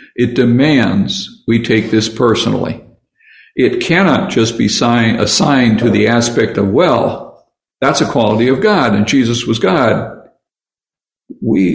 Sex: male